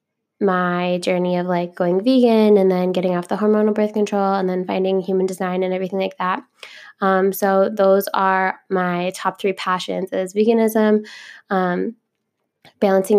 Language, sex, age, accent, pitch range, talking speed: English, female, 10-29, American, 185-205 Hz, 160 wpm